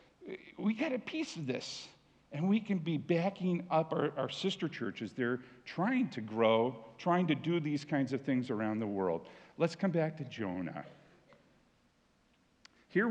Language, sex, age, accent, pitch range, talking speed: English, male, 50-69, American, 115-190 Hz, 165 wpm